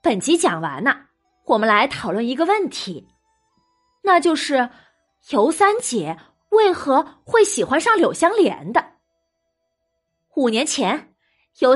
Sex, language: female, Japanese